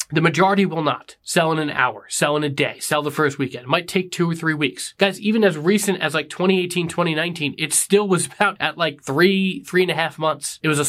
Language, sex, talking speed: English, male, 255 wpm